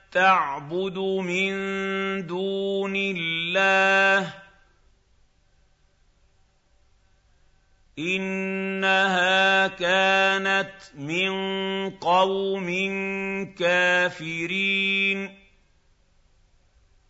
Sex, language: male, Arabic